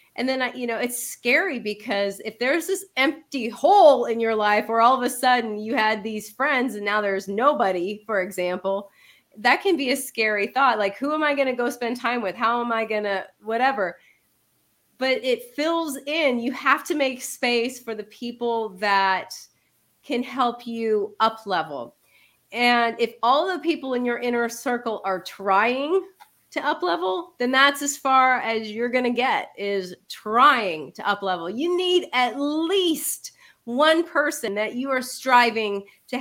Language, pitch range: English, 210-265 Hz